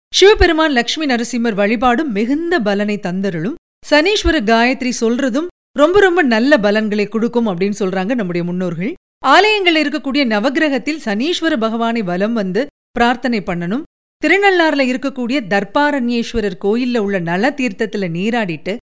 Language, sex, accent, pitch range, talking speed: Tamil, female, native, 215-295 Hz, 115 wpm